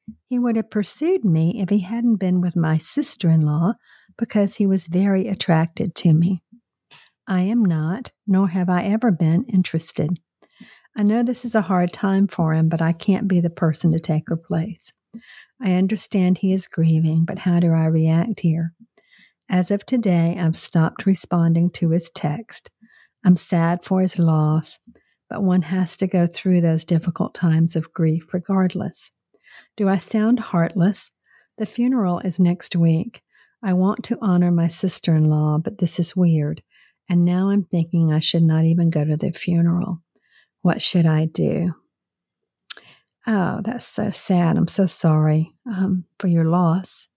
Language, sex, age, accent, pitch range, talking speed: English, female, 50-69, American, 170-205 Hz, 165 wpm